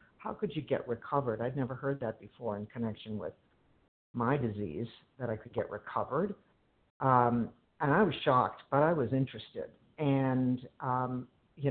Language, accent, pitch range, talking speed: English, American, 120-140 Hz, 165 wpm